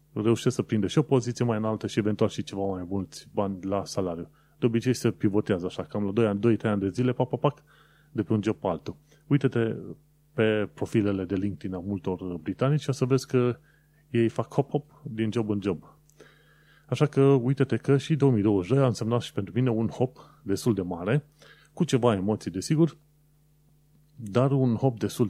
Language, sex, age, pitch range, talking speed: Romanian, male, 30-49, 105-140 Hz, 190 wpm